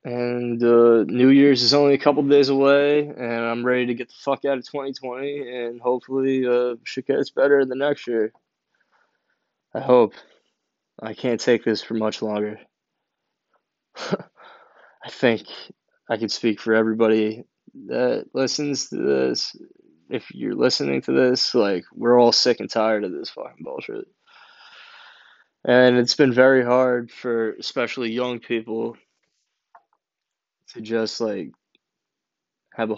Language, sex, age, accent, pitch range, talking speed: English, male, 20-39, American, 115-135 Hz, 145 wpm